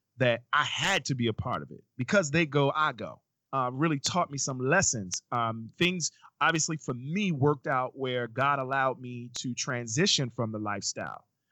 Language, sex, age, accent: English, male, 40-59, American